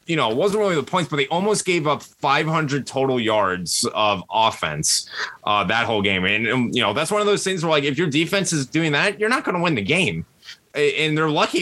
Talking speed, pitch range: 250 wpm, 110-145 Hz